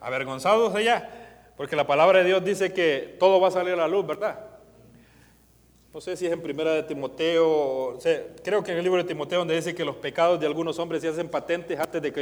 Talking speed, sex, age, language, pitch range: 225 wpm, male, 30-49, Spanish, 160-205 Hz